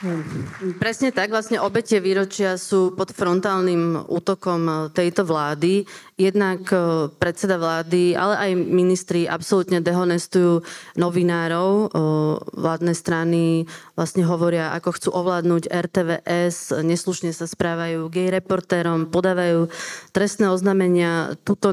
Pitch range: 165-190 Hz